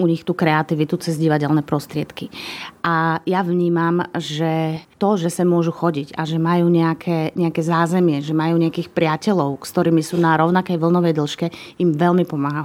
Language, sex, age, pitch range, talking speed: Slovak, female, 30-49, 160-175 Hz, 170 wpm